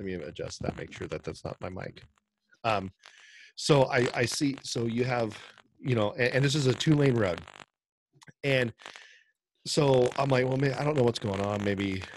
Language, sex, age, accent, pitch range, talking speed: English, male, 30-49, American, 105-135 Hz, 205 wpm